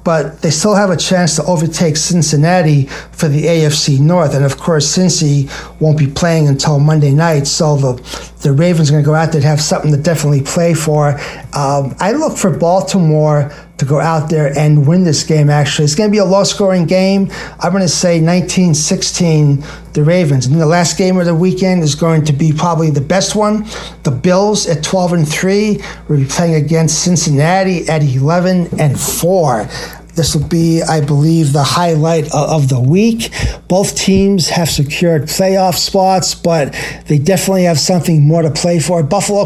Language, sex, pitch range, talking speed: English, male, 150-180 Hz, 180 wpm